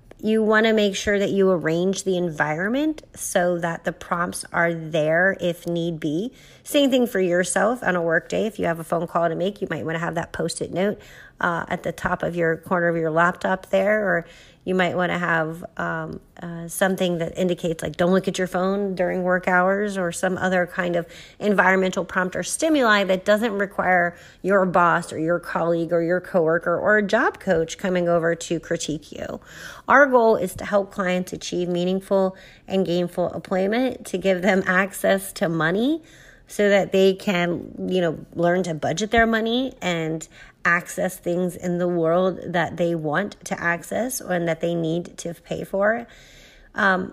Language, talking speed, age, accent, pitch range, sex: English, 190 wpm, 30-49, American, 170-200 Hz, female